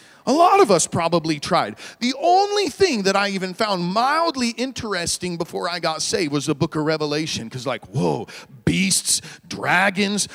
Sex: male